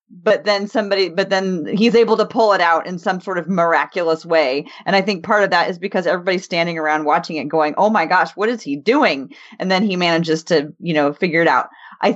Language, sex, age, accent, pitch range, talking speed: English, female, 30-49, American, 165-215 Hz, 240 wpm